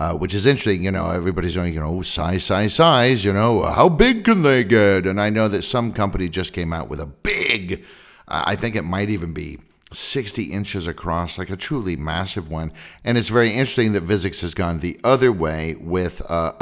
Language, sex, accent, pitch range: English, male, American, 80-100 Hz